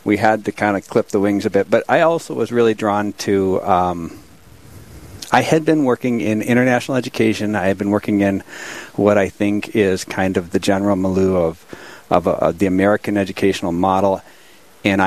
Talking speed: 185 wpm